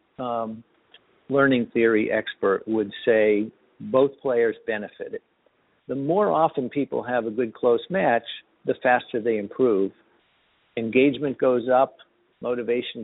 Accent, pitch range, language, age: American, 115-150 Hz, English, 50-69